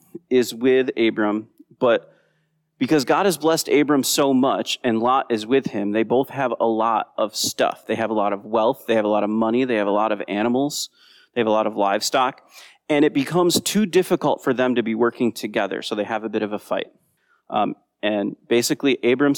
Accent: American